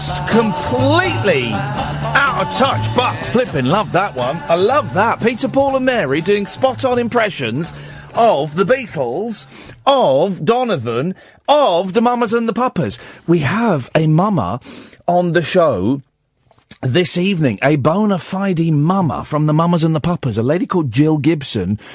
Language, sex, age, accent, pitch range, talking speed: English, male, 40-59, British, 130-215 Hz, 150 wpm